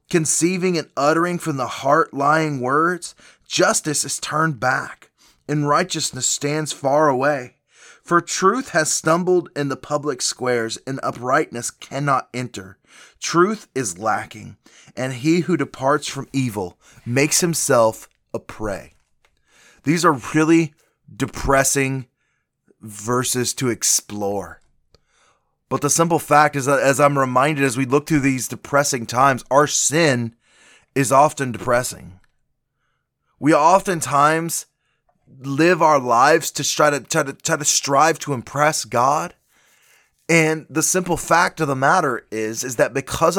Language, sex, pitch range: English, male, 130-160 Hz